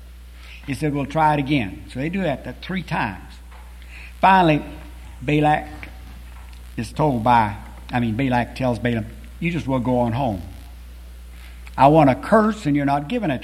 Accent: American